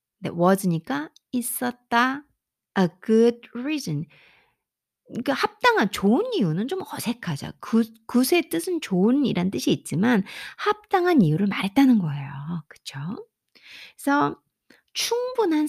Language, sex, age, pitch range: Korean, female, 50-69, 180-290 Hz